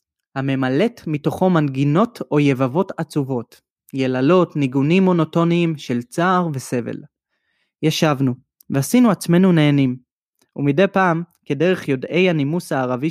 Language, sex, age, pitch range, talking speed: Hebrew, male, 20-39, 135-185 Hz, 100 wpm